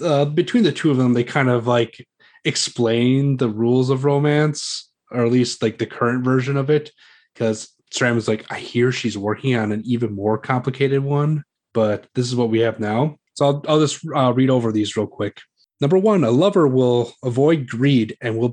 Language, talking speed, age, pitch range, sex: English, 205 wpm, 30-49, 110-140 Hz, male